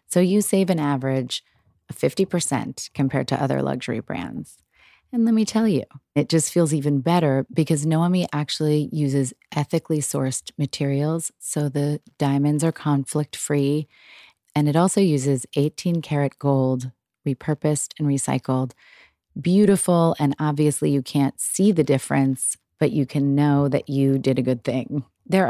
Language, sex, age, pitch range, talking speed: English, female, 30-49, 135-165 Hz, 145 wpm